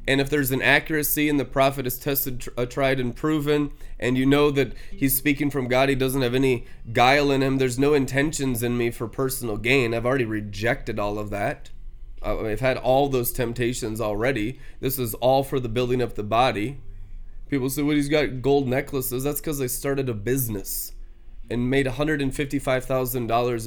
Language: English